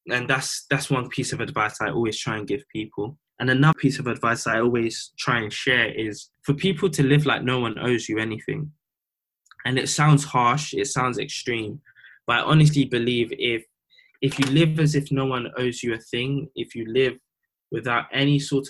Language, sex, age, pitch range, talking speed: English, male, 10-29, 115-140 Hz, 200 wpm